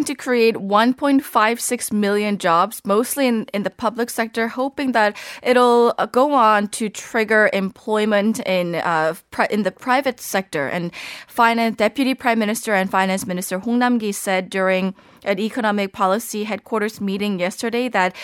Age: 20-39